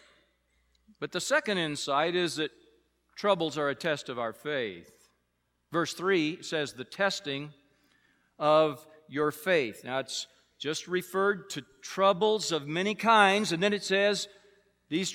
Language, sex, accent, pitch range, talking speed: English, male, American, 150-210 Hz, 140 wpm